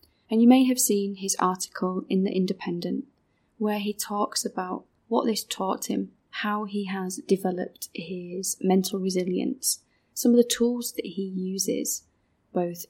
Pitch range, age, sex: 185-220 Hz, 20-39, female